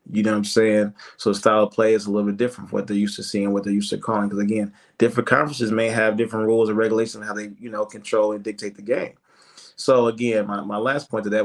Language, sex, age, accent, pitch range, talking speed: English, male, 20-39, American, 105-120 Hz, 290 wpm